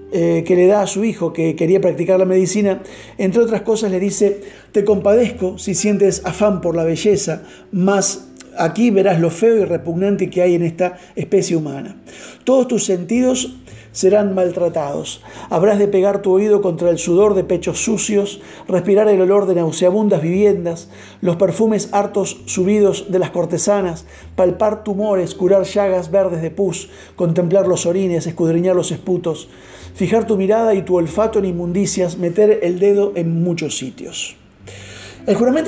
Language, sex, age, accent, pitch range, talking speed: Spanish, male, 50-69, Argentinian, 170-205 Hz, 160 wpm